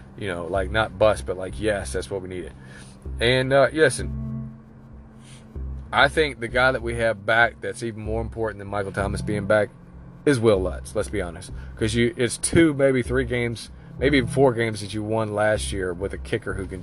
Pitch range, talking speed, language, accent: 90-115 Hz, 205 wpm, English, American